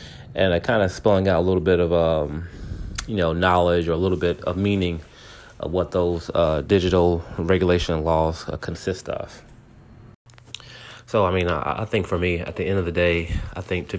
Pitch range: 85-105 Hz